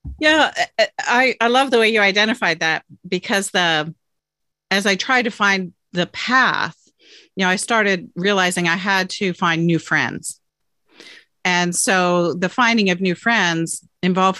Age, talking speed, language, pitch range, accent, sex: 40-59, 155 wpm, English, 165-210 Hz, American, female